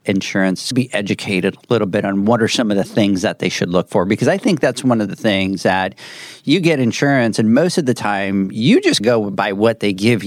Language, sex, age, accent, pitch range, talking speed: English, male, 40-59, American, 100-130 Hz, 250 wpm